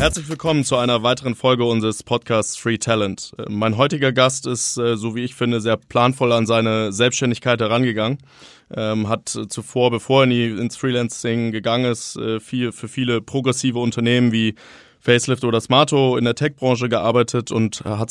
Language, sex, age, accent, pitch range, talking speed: German, male, 20-39, German, 110-125 Hz, 150 wpm